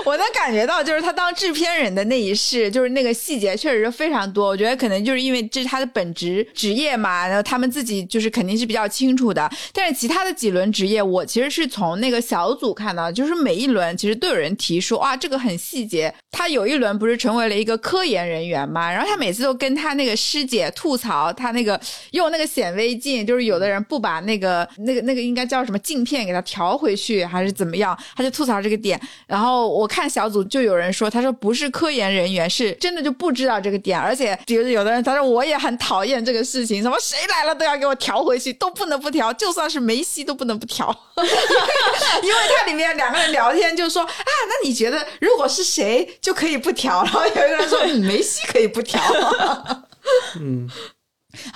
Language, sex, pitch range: Chinese, female, 205-280 Hz